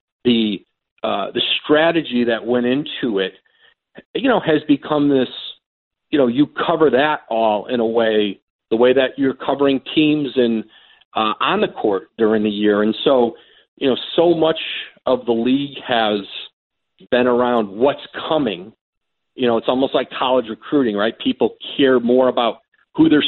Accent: American